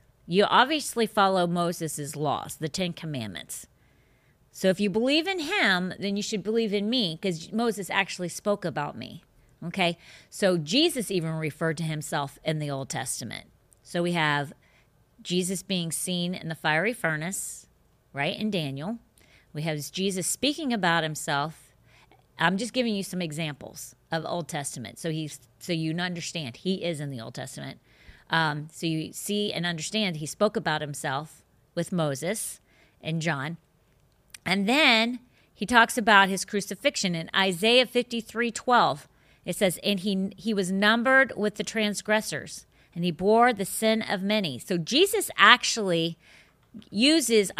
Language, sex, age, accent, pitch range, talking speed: English, female, 40-59, American, 160-210 Hz, 155 wpm